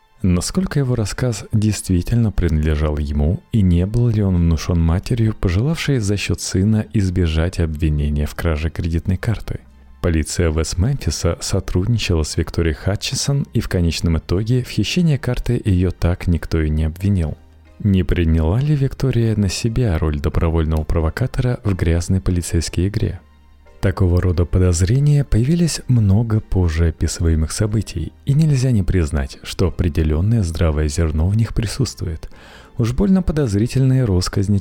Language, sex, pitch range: Russian, male, 80-115 Hz